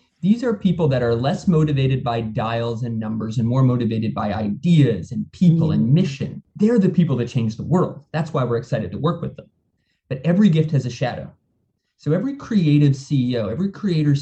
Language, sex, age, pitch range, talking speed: English, male, 20-39, 120-165 Hz, 200 wpm